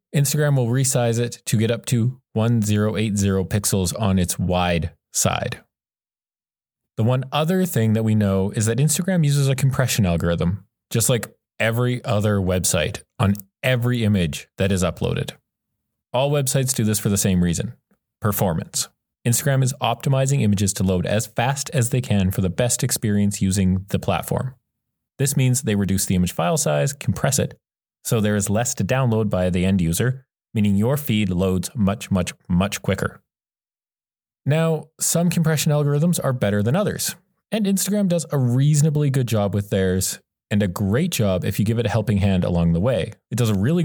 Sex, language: male, English